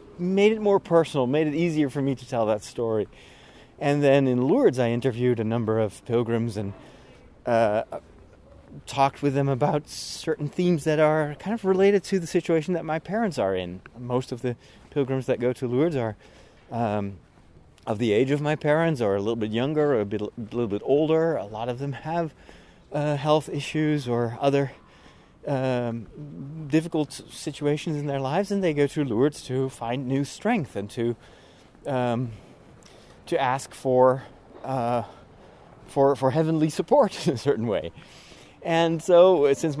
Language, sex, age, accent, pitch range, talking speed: English, male, 30-49, American, 110-150 Hz, 175 wpm